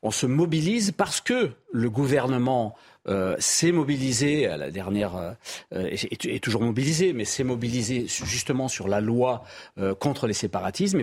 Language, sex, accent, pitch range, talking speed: French, male, French, 115-160 Hz, 165 wpm